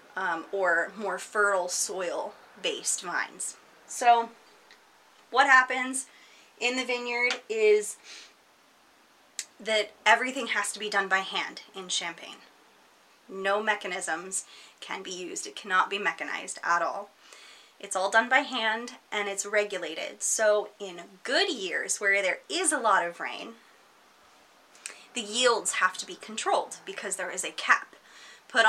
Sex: female